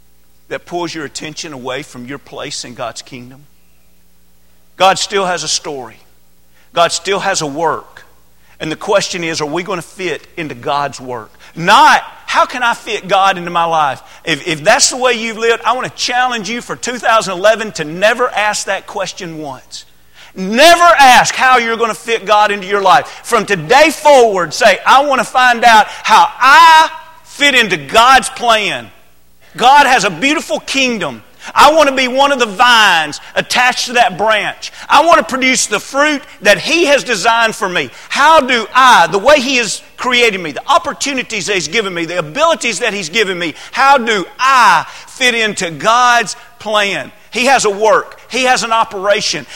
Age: 40-59